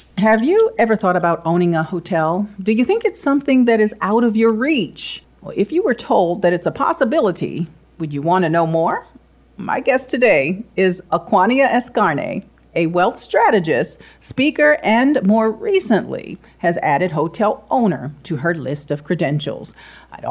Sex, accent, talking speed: female, American, 170 wpm